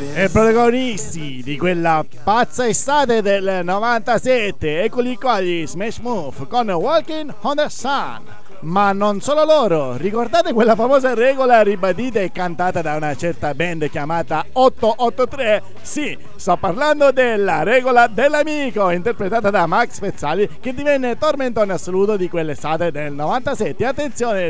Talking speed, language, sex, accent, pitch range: 130 wpm, Italian, male, native, 180-255 Hz